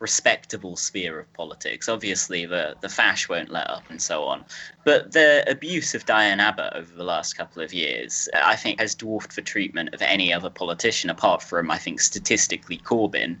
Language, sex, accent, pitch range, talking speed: English, male, British, 100-130 Hz, 190 wpm